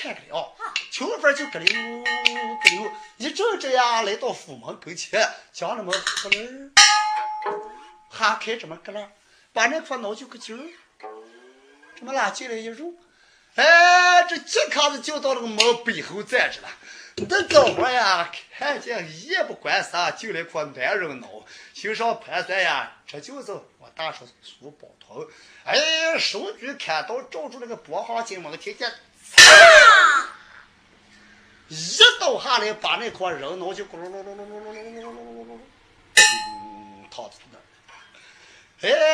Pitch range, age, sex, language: 210-350 Hz, 30-49, male, Chinese